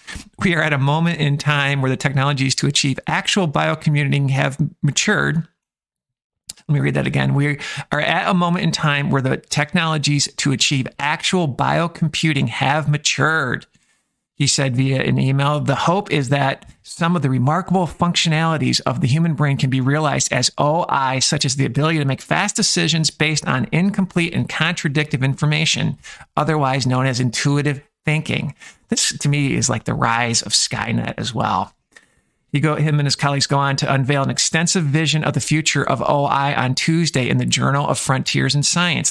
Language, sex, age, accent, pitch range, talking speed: English, male, 50-69, American, 140-170 Hz, 180 wpm